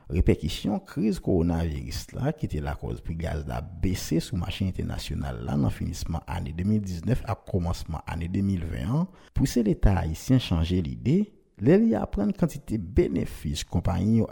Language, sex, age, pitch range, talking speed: French, male, 60-79, 85-135 Hz, 155 wpm